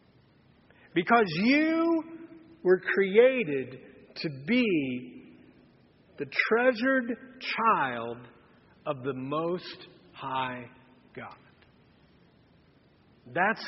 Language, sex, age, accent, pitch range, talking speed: English, male, 40-59, American, 155-245 Hz, 65 wpm